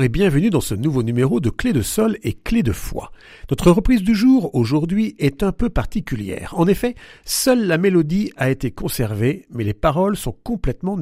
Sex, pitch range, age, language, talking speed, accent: male, 120-195 Hz, 50-69, French, 195 wpm, French